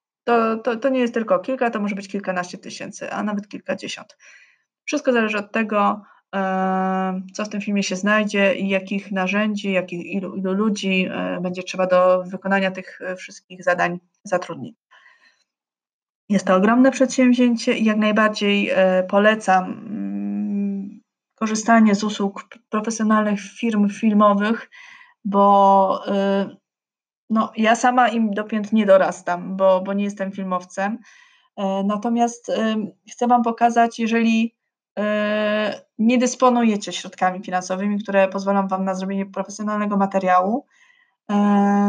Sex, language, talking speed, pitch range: female, Polish, 125 wpm, 190-230 Hz